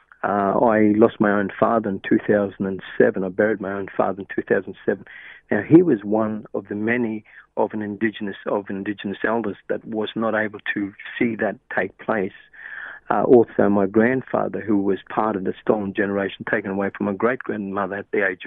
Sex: male